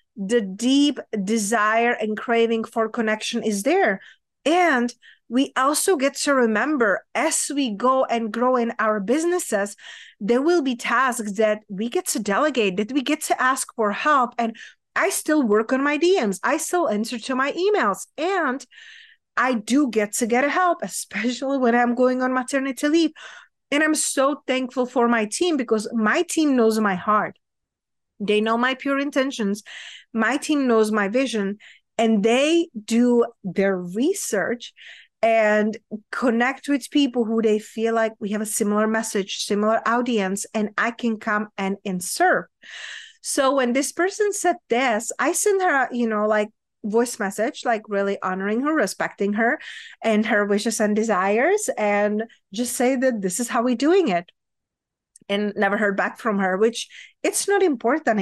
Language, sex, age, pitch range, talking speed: English, female, 30-49, 215-280 Hz, 165 wpm